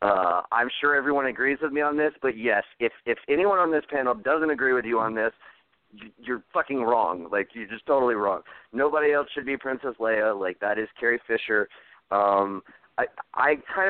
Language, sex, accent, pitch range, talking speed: English, male, American, 110-155 Hz, 205 wpm